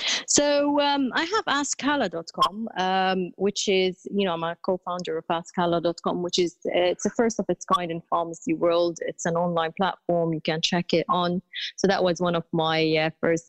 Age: 30-49